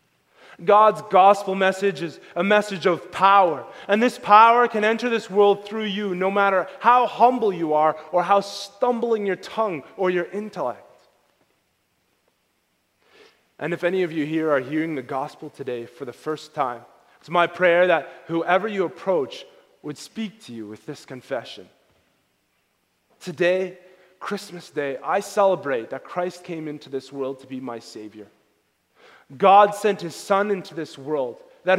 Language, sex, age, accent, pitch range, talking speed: English, male, 20-39, American, 150-200 Hz, 155 wpm